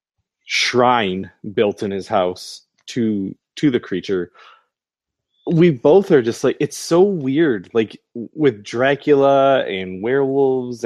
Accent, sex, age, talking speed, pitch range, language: American, male, 20-39, 120 wpm, 105-150 Hz, English